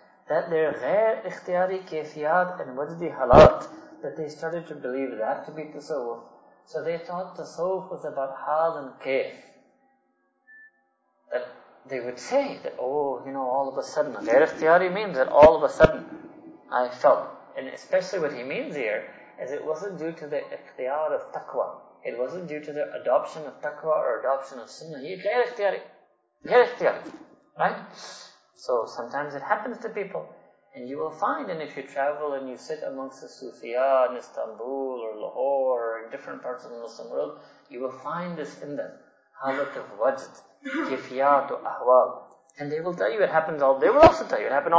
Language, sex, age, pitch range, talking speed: English, male, 30-49, 140-210 Hz, 185 wpm